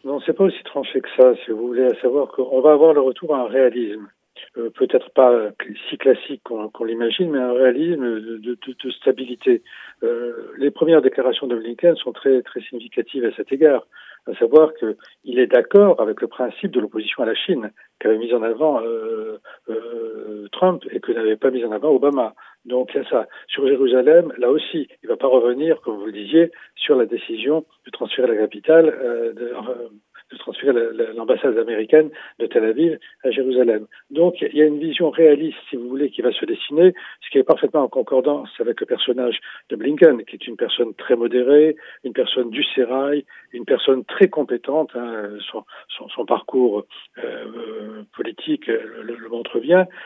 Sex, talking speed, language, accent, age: male, 195 wpm, French, French, 40-59